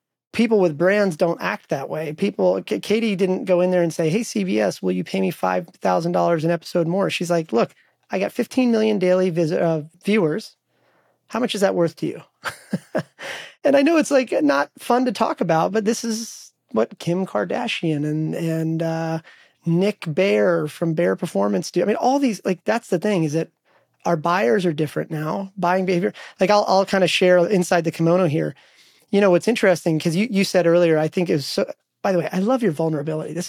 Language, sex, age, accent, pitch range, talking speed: English, male, 30-49, American, 165-210 Hz, 215 wpm